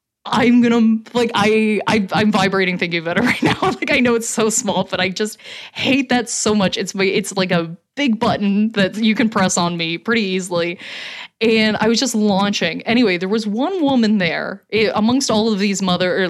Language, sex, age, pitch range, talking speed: English, female, 20-39, 185-240 Hz, 205 wpm